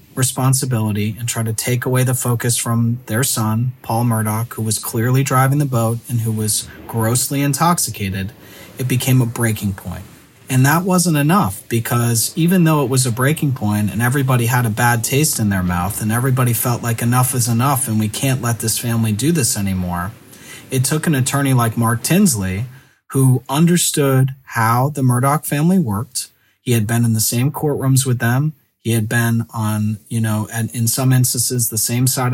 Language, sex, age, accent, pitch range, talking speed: English, male, 30-49, American, 110-130 Hz, 190 wpm